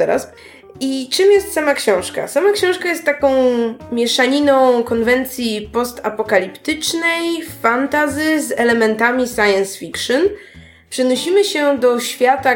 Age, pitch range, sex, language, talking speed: 20-39, 215-275 Hz, female, Polish, 100 wpm